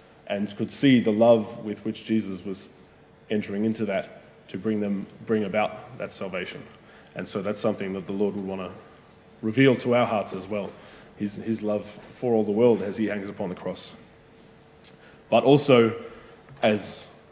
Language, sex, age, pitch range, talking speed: English, male, 20-39, 105-120 Hz, 175 wpm